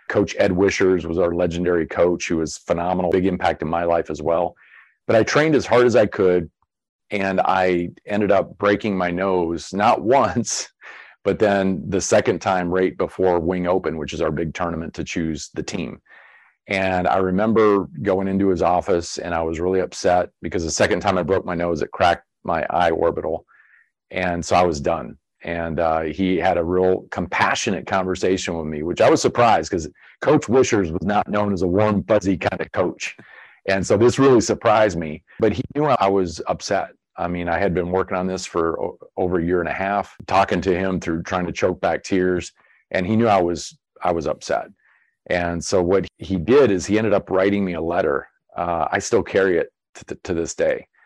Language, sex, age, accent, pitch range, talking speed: English, male, 40-59, American, 85-100 Hz, 210 wpm